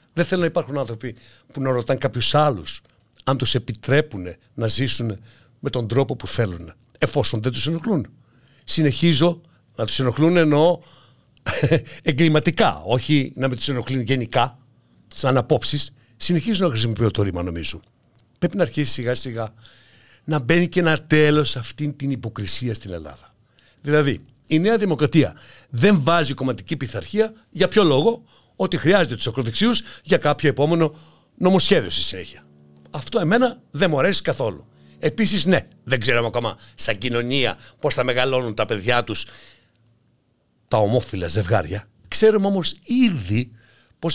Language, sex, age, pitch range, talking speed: Greek, male, 60-79, 120-165 Hz, 145 wpm